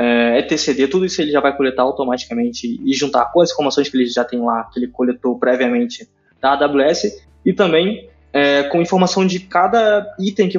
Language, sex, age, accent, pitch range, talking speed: Portuguese, male, 20-39, Brazilian, 130-170 Hz, 180 wpm